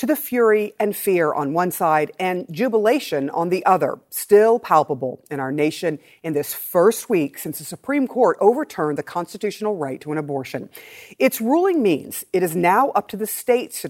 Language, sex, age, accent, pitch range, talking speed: English, female, 50-69, American, 155-230 Hz, 190 wpm